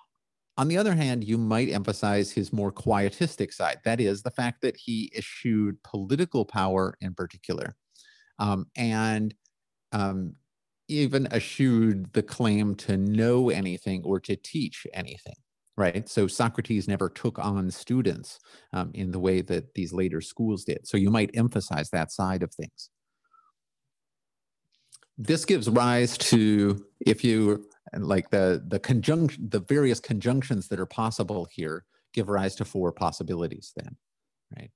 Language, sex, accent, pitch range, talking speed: English, male, American, 95-125 Hz, 145 wpm